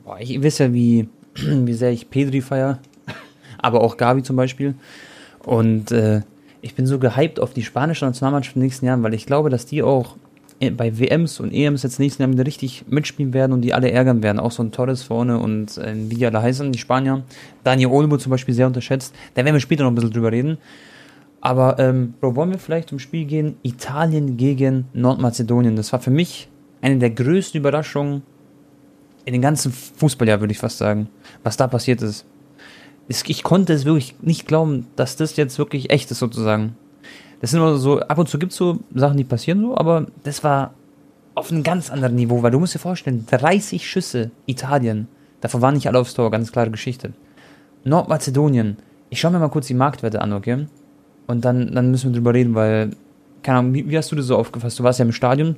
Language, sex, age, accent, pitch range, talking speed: German, male, 20-39, German, 120-145 Hz, 210 wpm